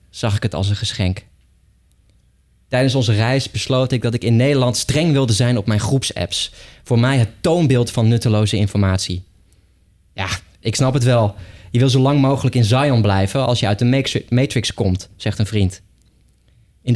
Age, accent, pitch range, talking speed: 20-39, Dutch, 100-125 Hz, 180 wpm